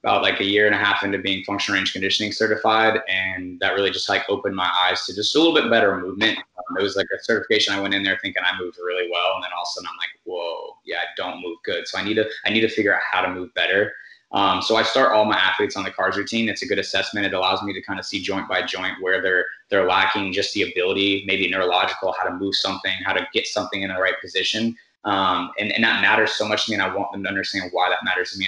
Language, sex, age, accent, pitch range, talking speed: English, male, 20-39, American, 95-110 Hz, 285 wpm